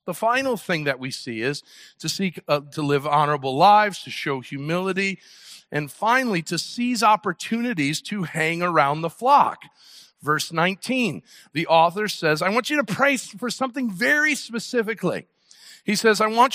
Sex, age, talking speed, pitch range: male, 50-69, 165 wpm, 160-225 Hz